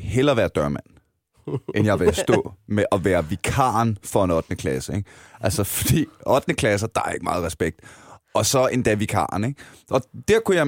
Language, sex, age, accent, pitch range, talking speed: Danish, male, 30-49, native, 100-140 Hz, 190 wpm